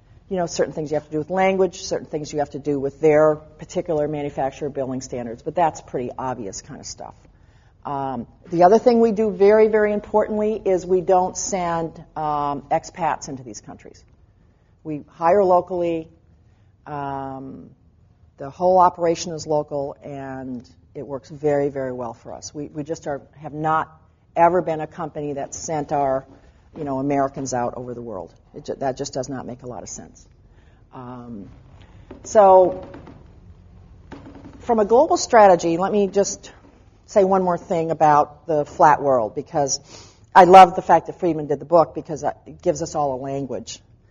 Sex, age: female, 50-69